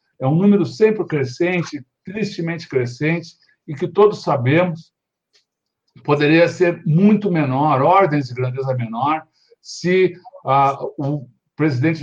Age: 60-79